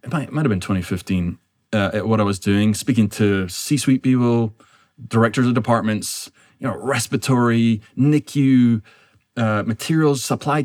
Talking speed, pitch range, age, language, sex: 150 wpm, 110-140 Hz, 20-39, English, male